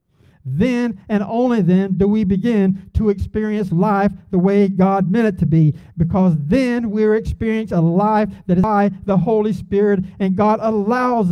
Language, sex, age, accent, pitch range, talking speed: English, male, 40-59, American, 190-245 Hz, 170 wpm